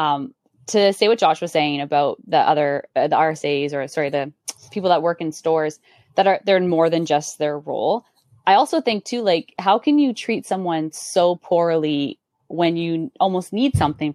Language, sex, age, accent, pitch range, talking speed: English, female, 20-39, American, 155-190 Hz, 195 wpm